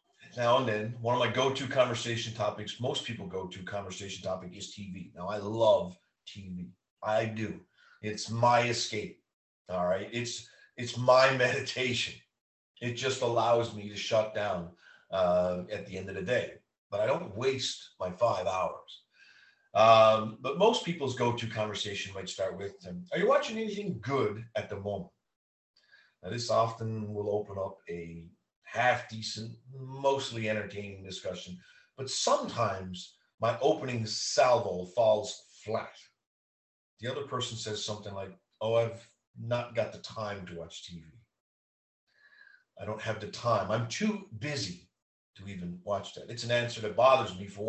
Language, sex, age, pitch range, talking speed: English, male, 40-59, 100-125 Hz, 155 wpm